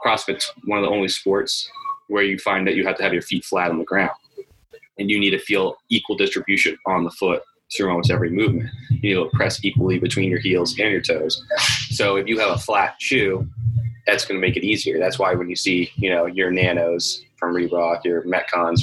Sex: male